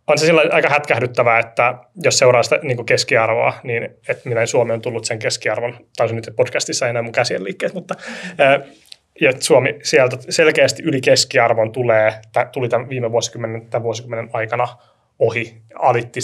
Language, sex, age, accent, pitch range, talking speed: Finnish, male, 20-39, native, 115-180 Hz, 165 wpm